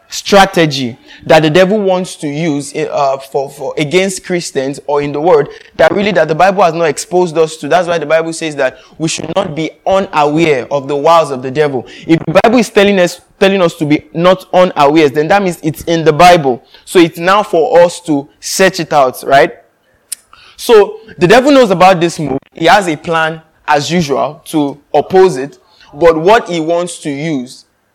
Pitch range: 145-180 Hz